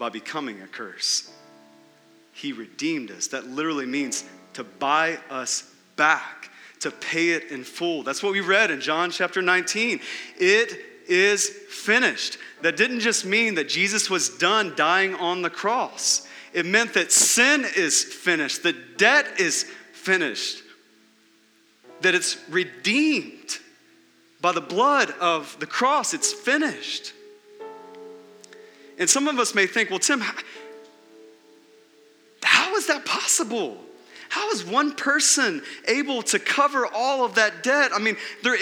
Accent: American